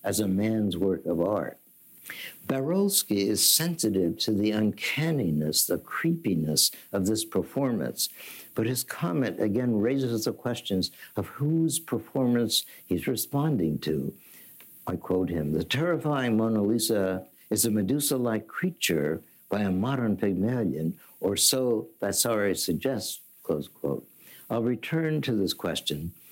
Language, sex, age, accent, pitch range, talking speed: English, male, 60-79, American, 95-130 Hz, 130 wpm